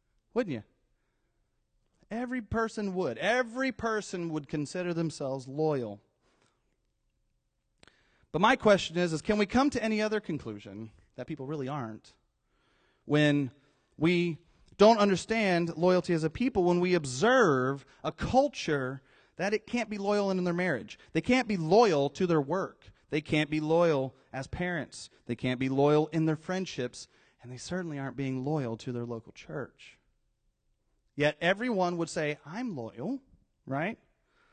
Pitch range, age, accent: 140-220 Hz, 30-49, American